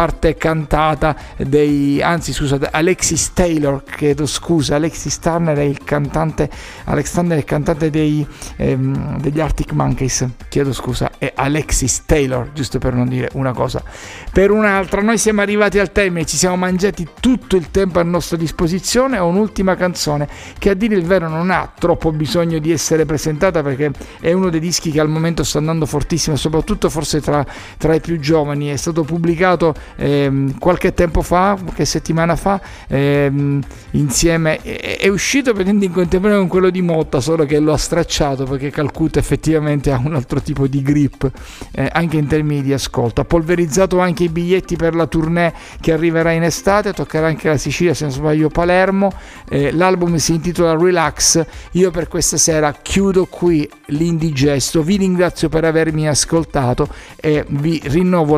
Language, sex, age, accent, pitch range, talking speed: Italian, male, 50-69, native, 145-175 Hz, 160 wpm